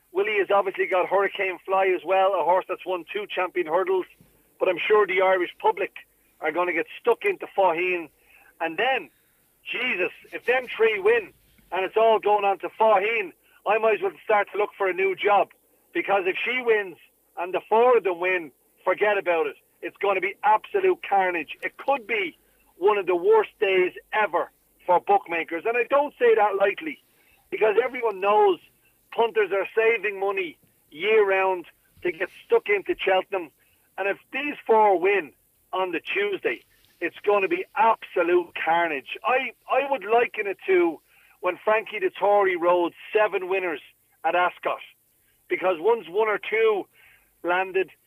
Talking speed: 170 wpm